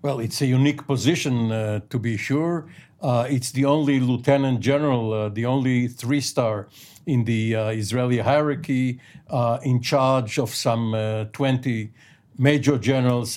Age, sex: 60-79, male